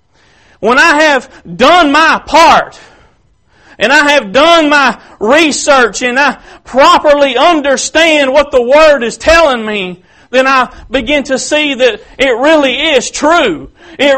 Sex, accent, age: male, American, 40-59